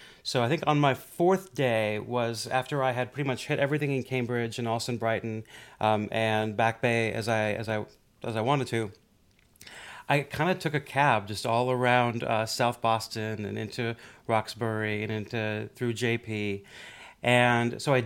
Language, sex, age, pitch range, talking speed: English, male, 30-49, 115-140 Hz, 180 wpm